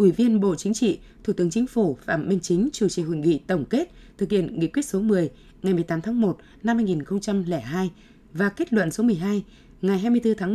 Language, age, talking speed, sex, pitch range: Vietnamese, 20-39, 215 wpm, female, 175-215 Hz